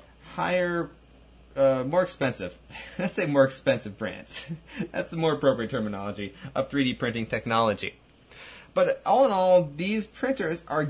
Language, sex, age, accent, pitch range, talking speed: English, male, 30-49, American, 115-150 Hz, 140 wpm